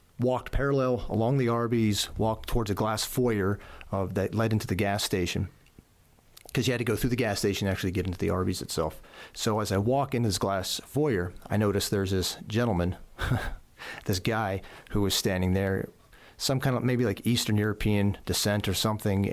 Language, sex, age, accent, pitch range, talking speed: English, male, 40-59, American, 95-115 Hz, 195 wpm